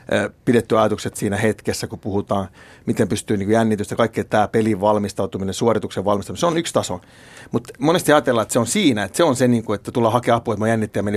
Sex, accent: male, native